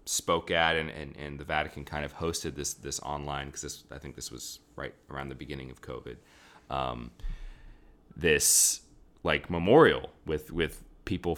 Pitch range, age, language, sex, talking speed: 70-80 Hz, 30-49, English, male, 170 wpm